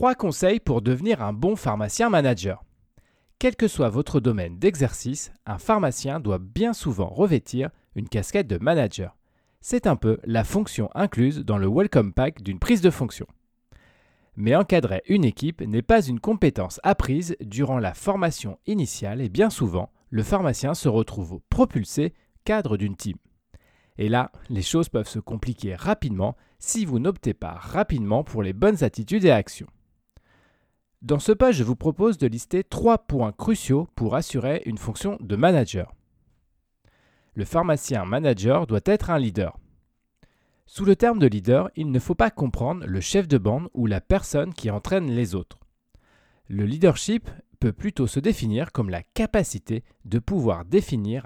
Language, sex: French, male